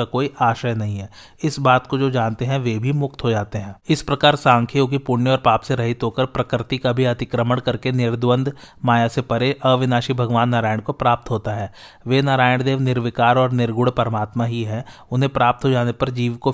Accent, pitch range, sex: native, 120-130 Hz, male